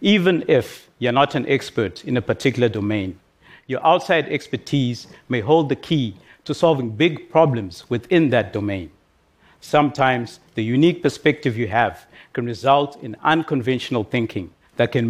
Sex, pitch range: male, 110-145 Hz